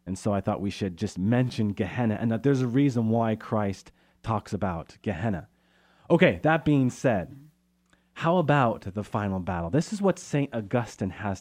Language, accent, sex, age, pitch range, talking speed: English, American, male, 30-49, 100-145 Hz, 180 wpm